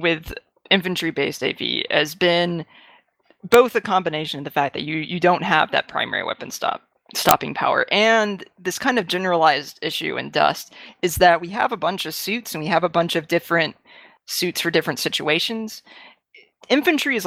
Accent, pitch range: American, 165-205 Hz